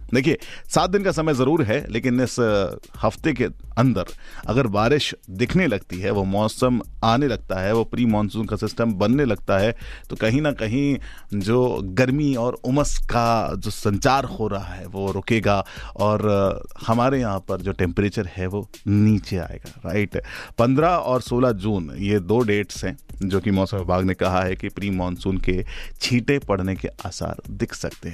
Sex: male